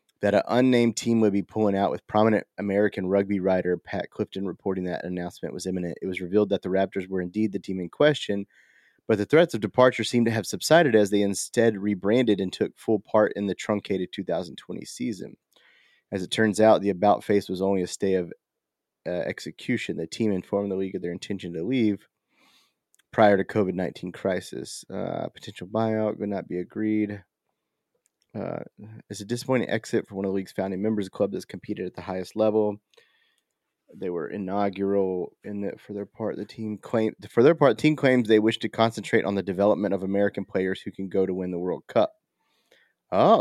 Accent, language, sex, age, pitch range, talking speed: American, English, male, 30-49, 95-110 Hz, 205 wpm